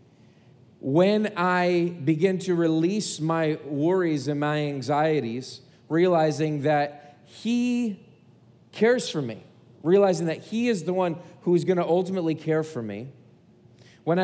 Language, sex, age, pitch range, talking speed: English, male, 40-59, 135-185 Hz, 125 wpm